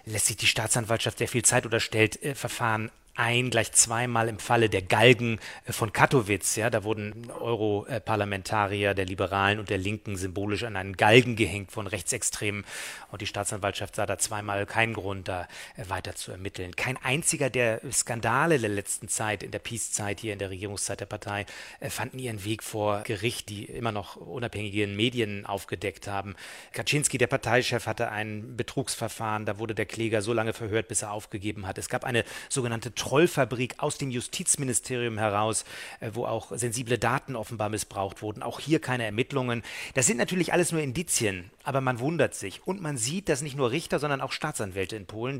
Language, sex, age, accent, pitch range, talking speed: German, male, 30-49, German, 105-130 Hz, 180 wpm